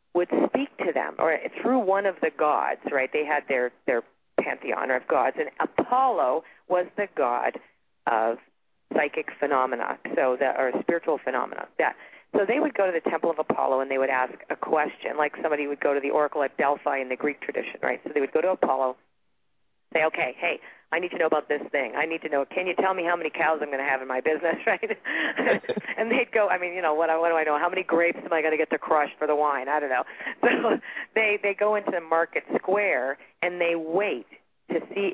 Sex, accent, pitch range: female, American, 145-195 Hz